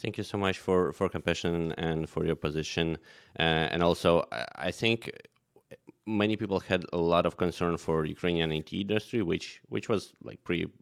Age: 20-39